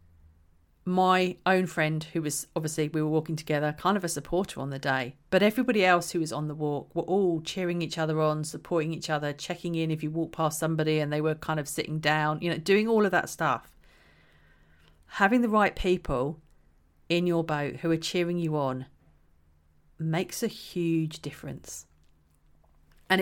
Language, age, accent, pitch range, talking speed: English, 40-59, British, 145-190 Hz, 185 wpm